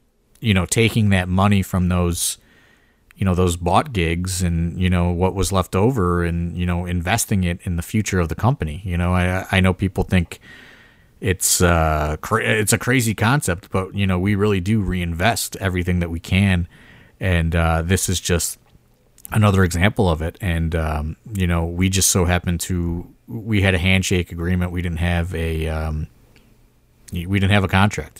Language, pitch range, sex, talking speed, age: English, 85-100 Hz, male, 185 wpm, 30-49